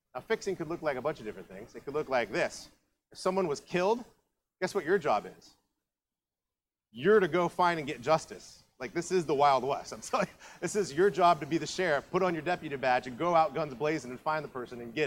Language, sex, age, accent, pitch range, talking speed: English, male, 30-49, American, 135-185 Hz, 250 wpm